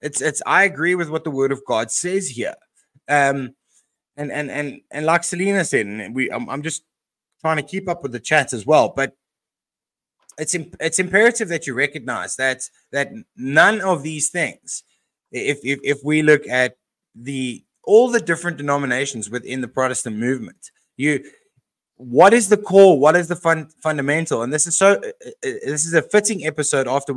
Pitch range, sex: 125-160 Hz, male